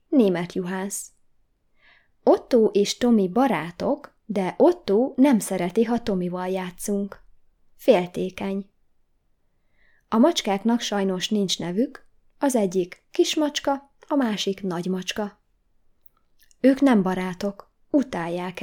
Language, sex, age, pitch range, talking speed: Hungarian, female, 20-39, 190-240 Hz, 95 wpm